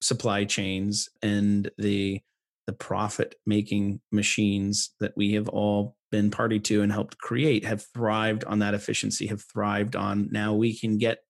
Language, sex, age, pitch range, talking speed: English, male, 30-49, 105-115 Hz, 155 wpm